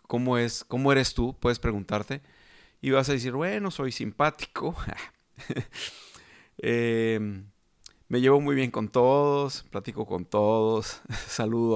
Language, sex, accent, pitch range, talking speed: Spanish, male, Mexican, 110-140 Hz, 130 wpm